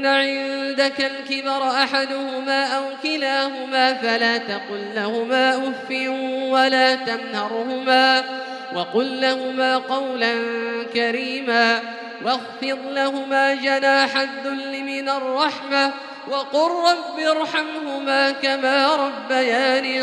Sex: male